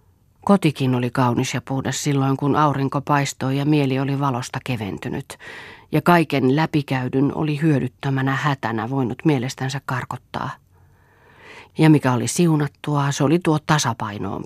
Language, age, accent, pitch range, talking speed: Finnish, 40-59, native, 120-150 Hz, 125 wpm